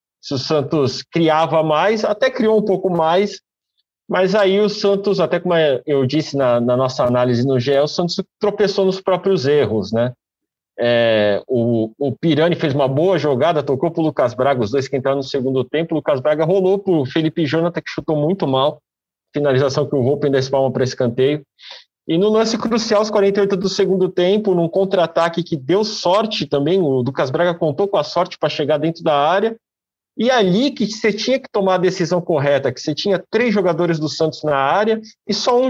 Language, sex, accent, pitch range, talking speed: Portuguese, male, Brazilian, 145-200 Hz, 200 wpm